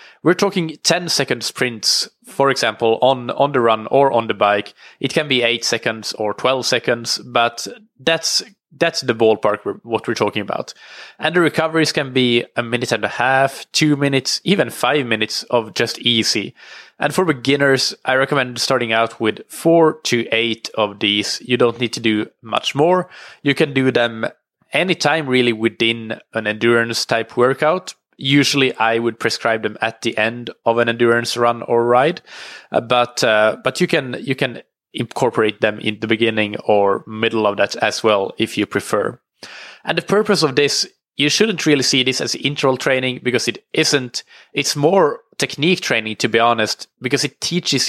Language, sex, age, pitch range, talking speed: English, male, 20-39, 115-145 Hz, 175 wpm